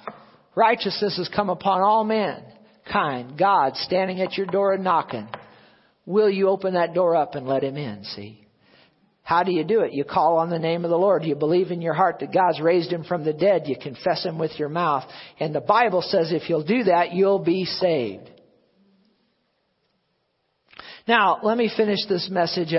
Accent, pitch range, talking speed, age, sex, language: American, 170-235 Hz, 190 wpm, 50-69, male, English